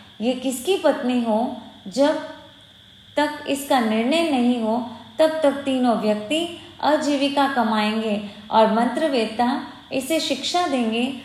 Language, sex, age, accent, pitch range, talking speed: Hindi, female, 20-39, native, 220-280 Hz, 105 wpm